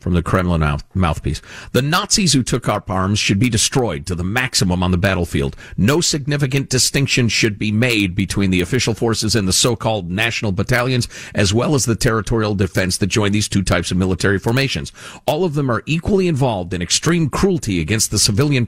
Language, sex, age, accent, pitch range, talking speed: English, male, 50-69, American, 100-155 Hz, 195 wpm